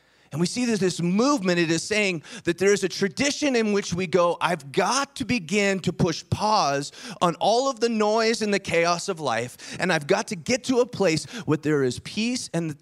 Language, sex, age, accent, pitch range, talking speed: English, male, 30-49, American, 140-205 Hz, 230 wpm